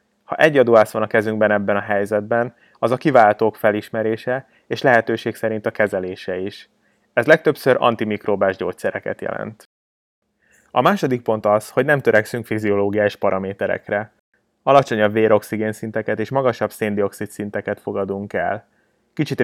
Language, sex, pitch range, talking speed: Hungarian, male, 100-115 Hz, 130 wpm